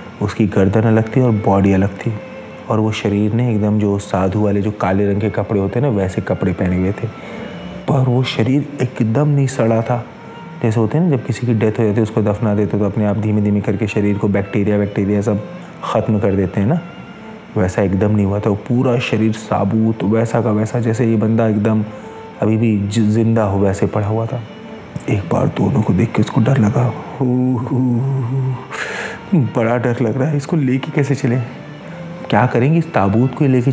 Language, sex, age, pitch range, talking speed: English, male, 30-49, 105-120 Hz, 135 wpm